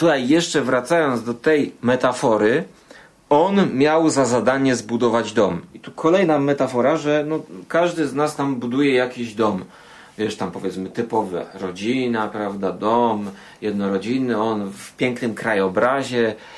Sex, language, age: male, Polish, 30-49